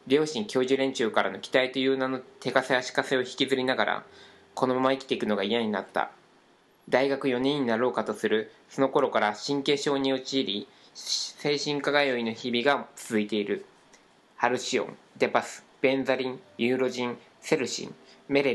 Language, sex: Japanese, male